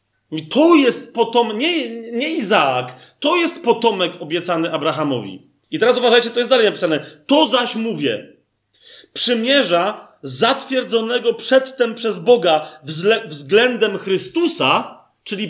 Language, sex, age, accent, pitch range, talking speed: Polish, male, 30-49, native, 180-245 Hz, 115 wpm